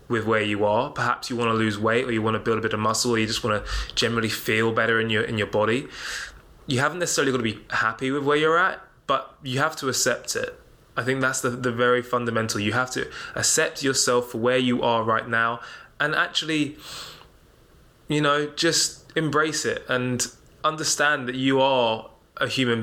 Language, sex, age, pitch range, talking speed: English, male, 20-39, 115-135 Hz, 210 wpm